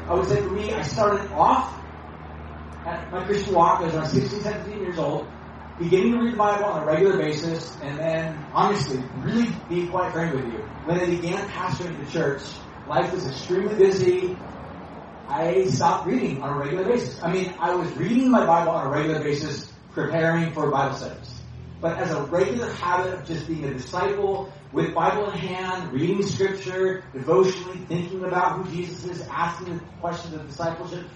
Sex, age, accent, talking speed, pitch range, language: male, 30-49, American, 185 wpm, 145-190 Hz, English